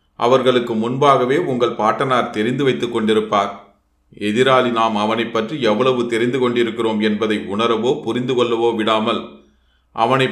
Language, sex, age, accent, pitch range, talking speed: Tamil, male, 30-49, native, 110-130 Hz, 105 wpm